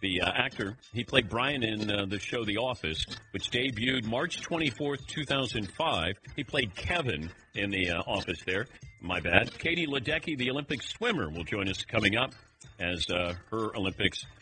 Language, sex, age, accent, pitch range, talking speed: English, male, 50-69, American, 95-145 Hz, 170 wpm